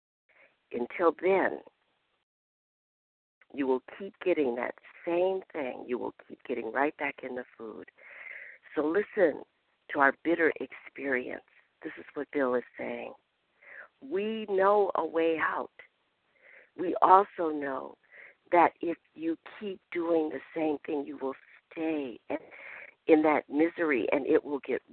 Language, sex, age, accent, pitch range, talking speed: English, female, 60-79, American, 130-175 Hz, 135 wpm